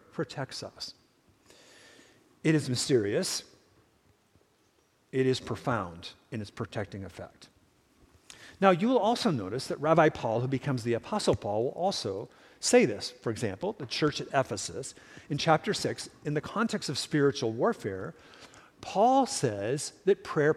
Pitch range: 125-185 Hz